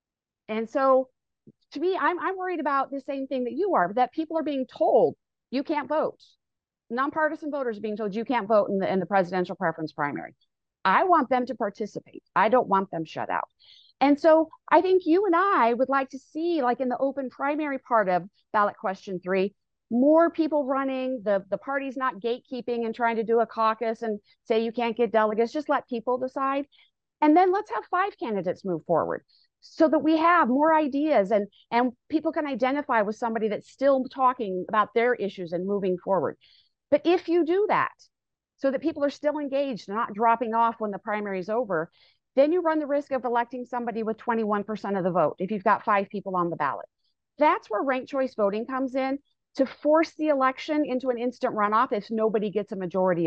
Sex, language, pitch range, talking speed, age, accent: female, English, 215-295 Hz, 205 wpm, 40-59, American